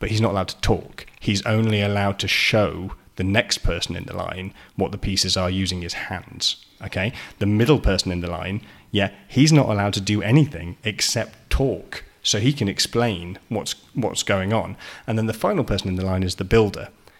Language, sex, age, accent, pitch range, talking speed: English, male, 30-49, British, 100-125 Hz, 205 wpm